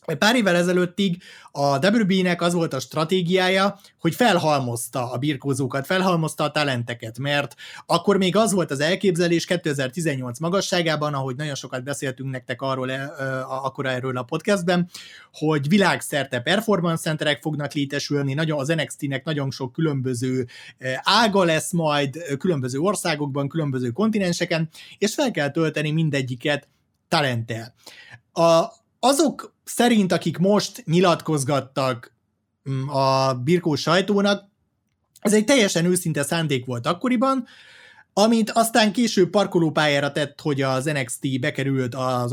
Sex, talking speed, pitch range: male, 120 wpm, 135-180 Hz